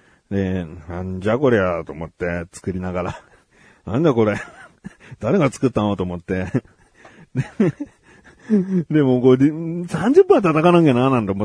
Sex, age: male, 40-59